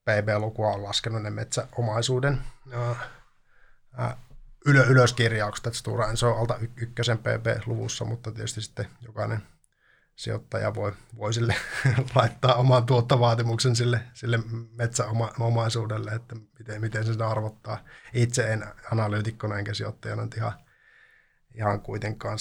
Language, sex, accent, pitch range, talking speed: Finnish, male, native, 110-125 Hz, 115 wpm